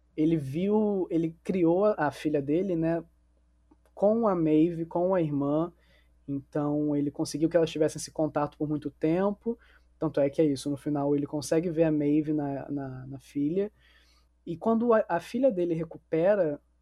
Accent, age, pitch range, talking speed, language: Brazilian, 20-39, 145-180 Hz, 175 wpm, Portuguese